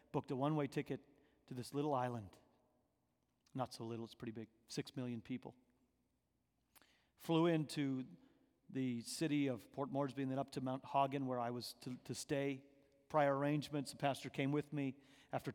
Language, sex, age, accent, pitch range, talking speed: English, male, 40-59, American, 130-155 Hz, 170 wpm